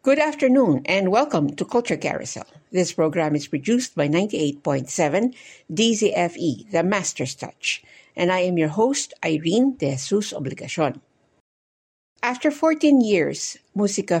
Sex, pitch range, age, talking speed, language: female, 155-205 Hz, 60-79, 125 wpm, English